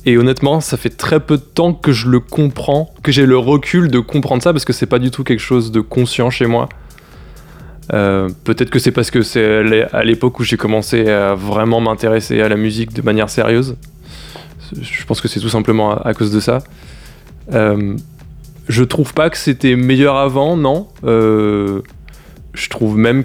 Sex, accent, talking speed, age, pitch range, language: male, French, 195 wpm, 20-39, 110-135 Hz, French